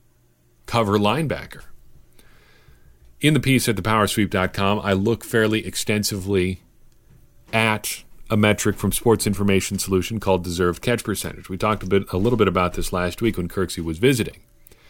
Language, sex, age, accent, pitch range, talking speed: English, male, 40-59, American, 95-115 Hz, 150 wpm